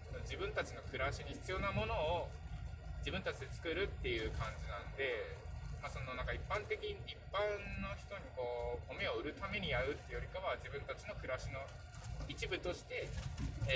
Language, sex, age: Japanese, male, 20-39